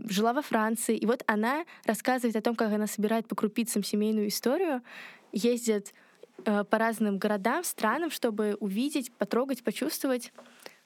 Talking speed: 145 wpm